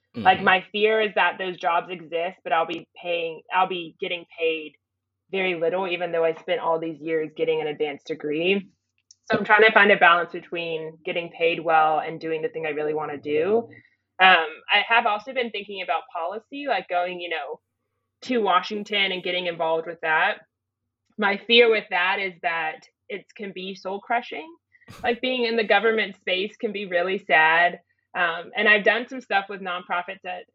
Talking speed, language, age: 190 wpm, English, 20-39